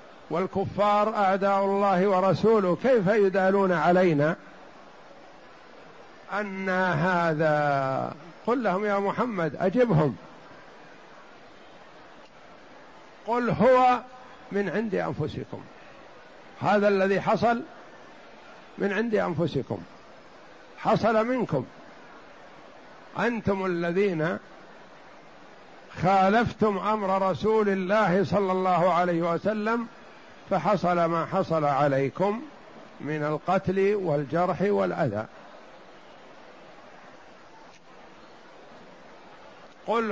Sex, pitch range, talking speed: male, 170-205 Hz, 70 wpm